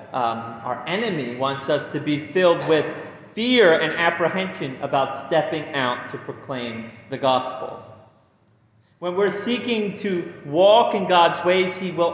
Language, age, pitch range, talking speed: English, 30-49, 135-175 Hz, 145 wpm